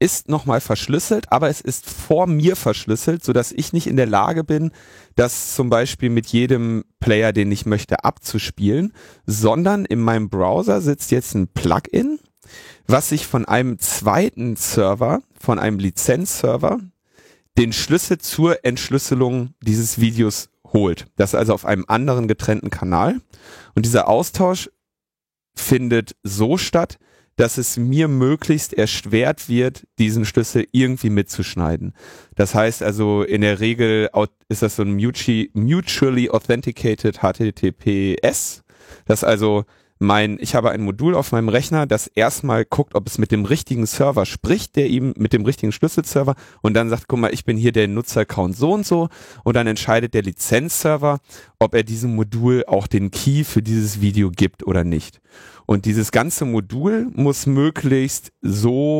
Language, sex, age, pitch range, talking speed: German, male, 30-49, 105-135 Hz, 155 wpm